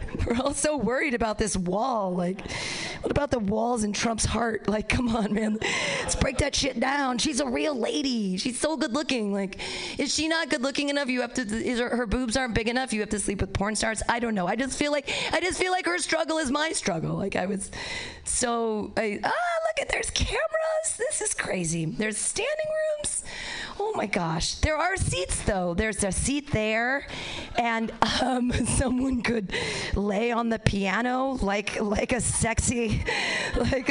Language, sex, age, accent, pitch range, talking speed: English, female, 40-59, American, 205-280 Hz, 200 wpm